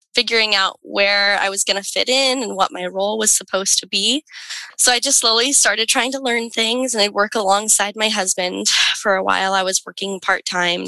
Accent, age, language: American, 10-29, English